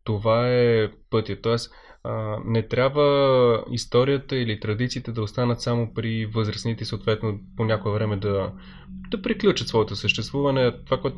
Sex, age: male, 20-39